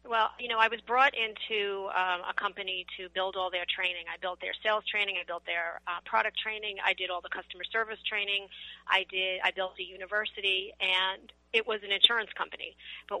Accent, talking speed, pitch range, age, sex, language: American, 205 wpm, 175-215 Hz, 40-59, female, English